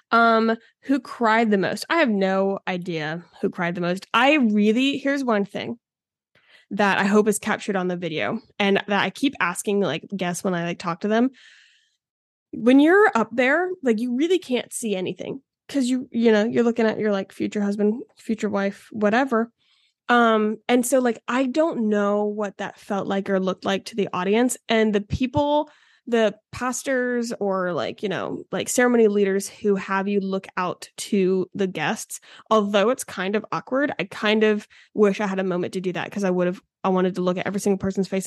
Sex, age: female, 20-39